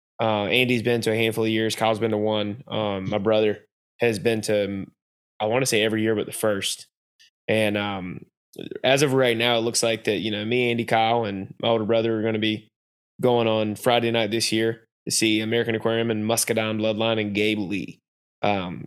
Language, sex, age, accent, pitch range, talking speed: English, male, 20-39, American, 110-120 Hz, 210 wpm